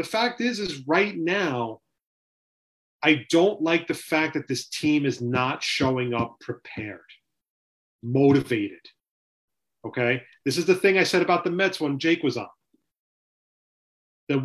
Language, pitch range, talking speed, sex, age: English, 140-190 Hz, 145 wpm, male, 30-49